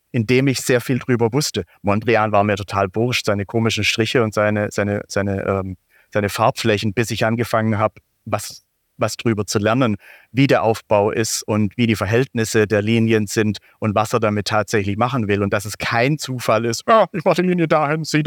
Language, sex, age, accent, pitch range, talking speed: German, male, 30-49, German, 110-135 Hz, 200 wpm